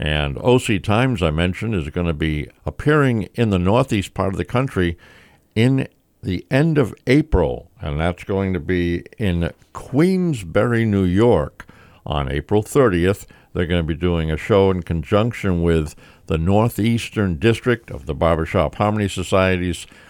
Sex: male